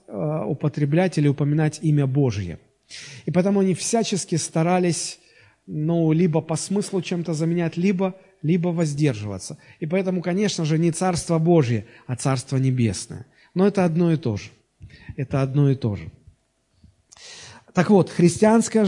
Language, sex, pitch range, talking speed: Russian, male, 135-180 Hz, 135 wpm